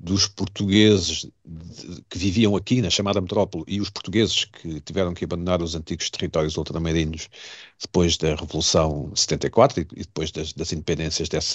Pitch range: 85-110 Hz